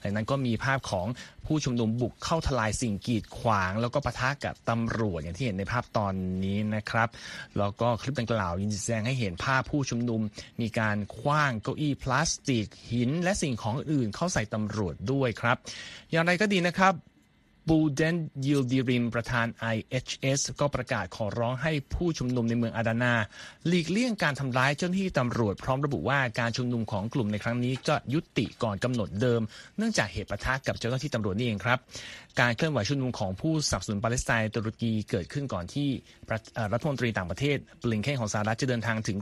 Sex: male